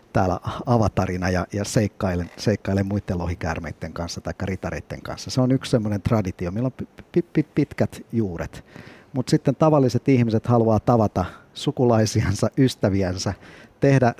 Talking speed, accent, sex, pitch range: 145 wpm, native, male, 95-120 Hz